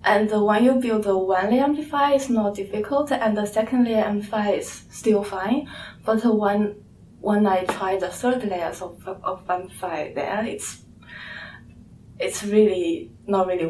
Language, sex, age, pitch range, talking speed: English, female, 20-39, 190-235 Hz, 160 wpm